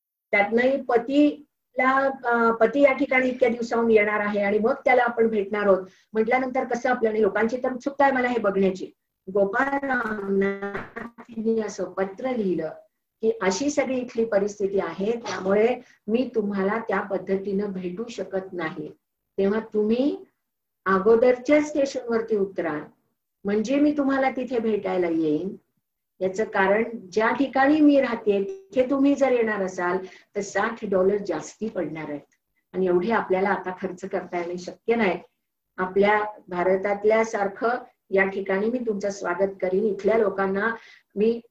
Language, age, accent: Marathi, 50-69, native